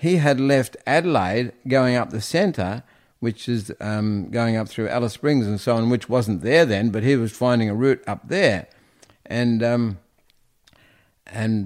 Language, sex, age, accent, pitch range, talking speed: English, male, 60-79, Australian, 115-140 Hz, 175 wpm